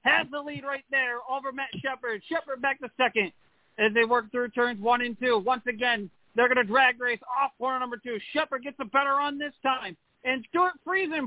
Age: 40-59